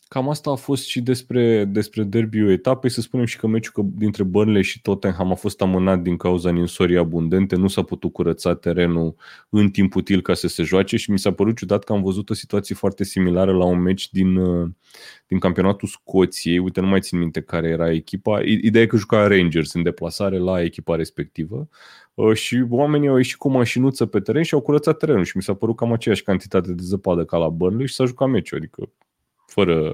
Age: 20-39